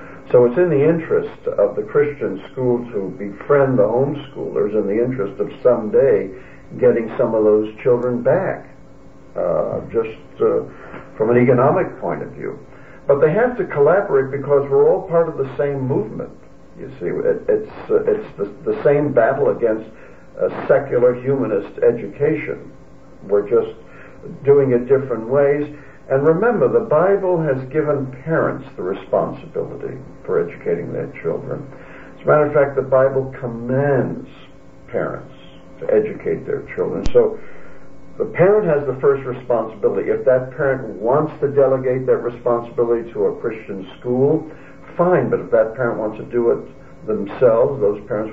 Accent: American